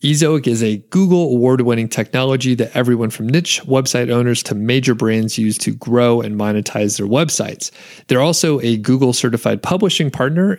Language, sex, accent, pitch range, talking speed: English, male, American, 110-145 Hz, 160 wpm